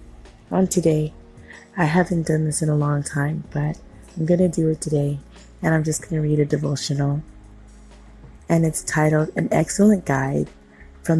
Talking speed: 170 wpm